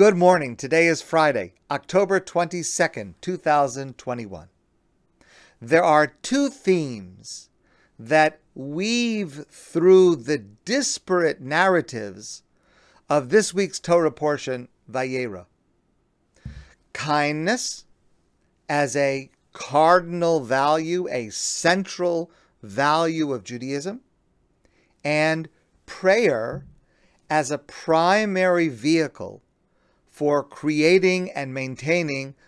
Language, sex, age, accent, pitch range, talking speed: English, male, 40-59, American, 140-180 Hz, 80 wpm